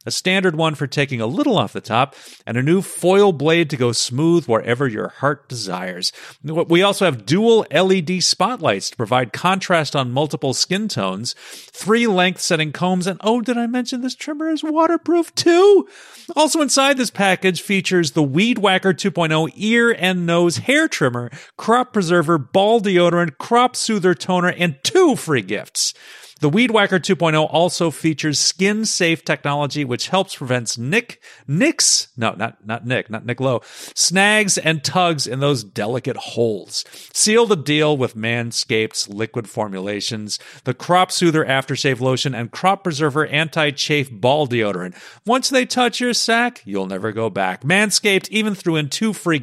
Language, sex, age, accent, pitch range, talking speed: English, male, 40-59, American, 135-200 Hz, 165 wpm